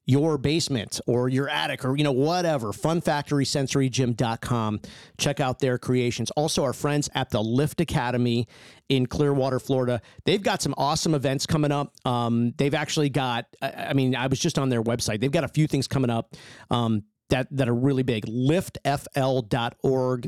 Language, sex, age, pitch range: English, male, 50-69, 120-150 Hz